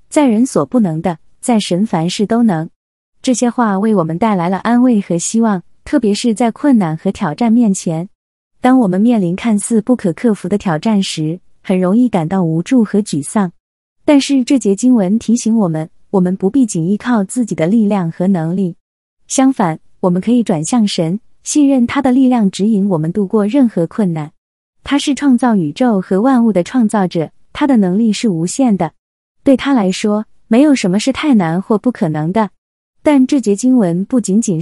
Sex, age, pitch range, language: female, 20-39, 185-240 Hz, Chinese